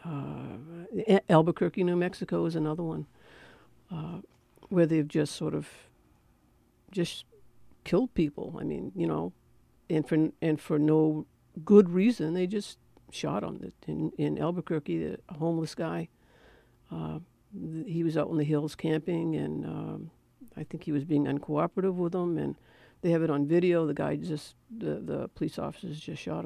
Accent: American